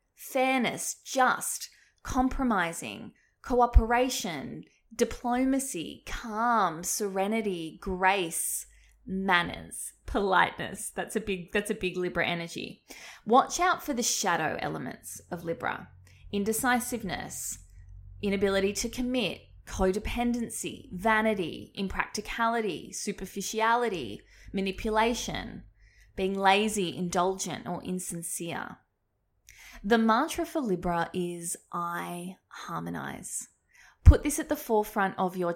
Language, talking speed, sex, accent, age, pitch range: English, 90 wpm, female, Australian, 20-39, 175-235 Hz